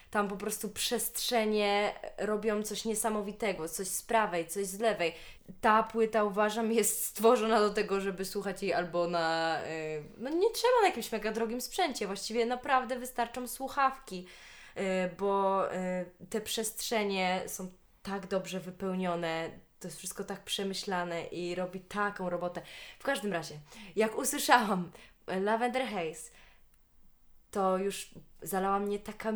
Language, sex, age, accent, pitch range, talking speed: Polish, female, 20-39, native, 180-225 Hz, 135 wpm